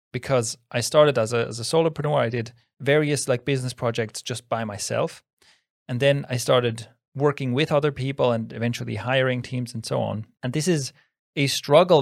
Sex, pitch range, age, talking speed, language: male, 120-150 Hz, 30-49, 185 wpm, English